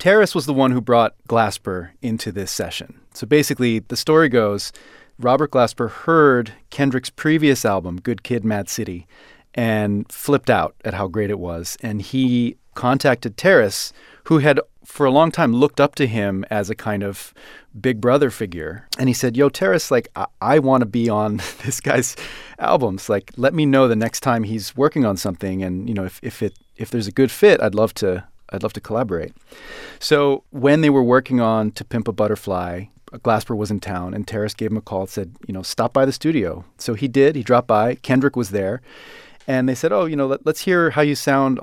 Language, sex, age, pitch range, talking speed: English, male, 30-49, 105-135 Hz, 210 wpm